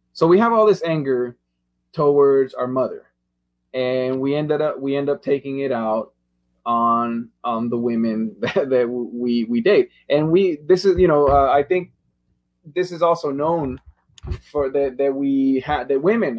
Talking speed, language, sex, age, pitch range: 175 wpm, English, male, 20-39, 110-145 Hz